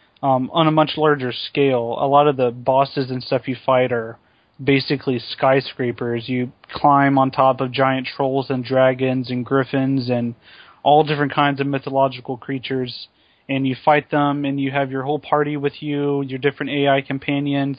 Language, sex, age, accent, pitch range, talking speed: English, male, 20-39, American, 125-145 Hz, 175 wpm